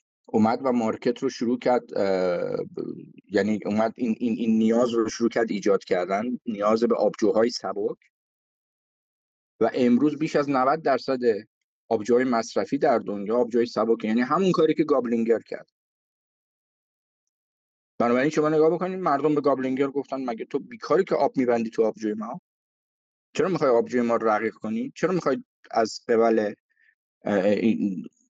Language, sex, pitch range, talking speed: Persian, male, 120-180 Hz, 145 wpm